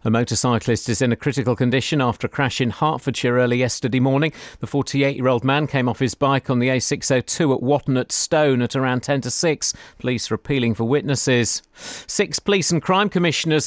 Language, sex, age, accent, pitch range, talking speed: English, male, 40-59, British, 130-170 Hz, 195 wpm